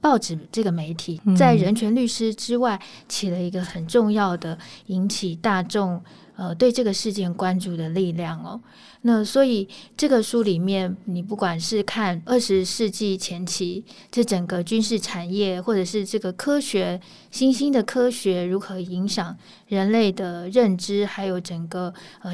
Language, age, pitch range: Chinese, 20-39, 185-220 Hz